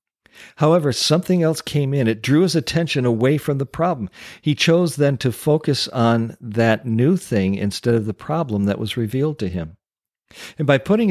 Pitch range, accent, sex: 100-145 Hz, American, male